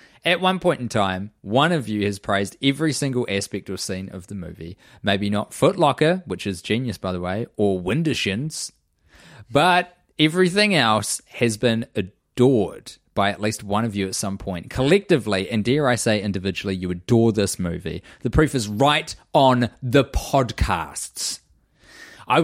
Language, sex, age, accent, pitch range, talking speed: English, male, 20-39, Australian, 100-155 Hz, 170 wpm